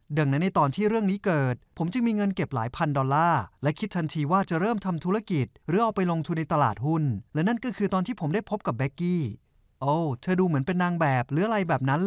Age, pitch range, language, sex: 20-39, 140-195 Hz, Thai, male